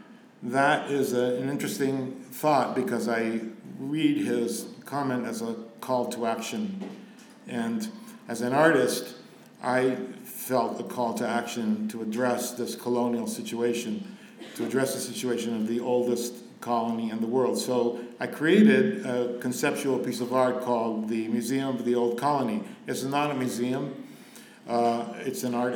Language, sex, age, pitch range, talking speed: English, male, 50-69, 120-155 Hz, 150 wpm